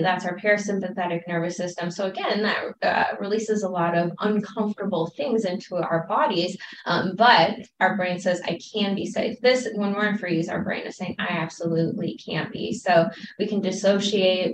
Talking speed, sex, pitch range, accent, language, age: 180 wpm, female, 170-195 Hz, American, English, 10-29